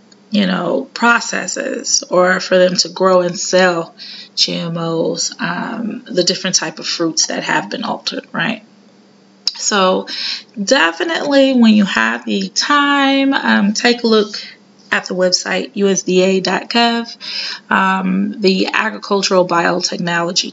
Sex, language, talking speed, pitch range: female, English, 115 wpm, 180-225 Hz